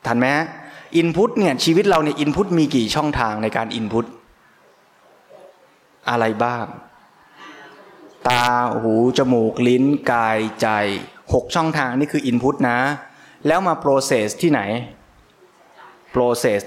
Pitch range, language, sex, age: 115-145 Hz, Thai, male, 20-39